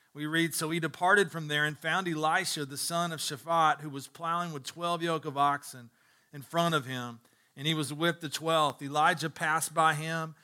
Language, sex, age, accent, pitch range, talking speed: English, male, 40-59, American, 145-180 Hz, 205 wpm